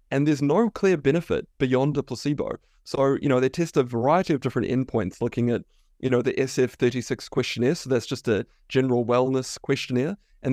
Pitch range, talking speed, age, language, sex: 115-135 Hz, 190 wpm, 20-39, English, male